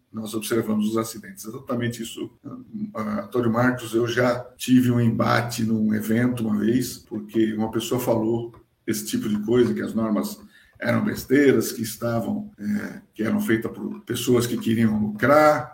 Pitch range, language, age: 115-135 Hz, Portuguese, 60-79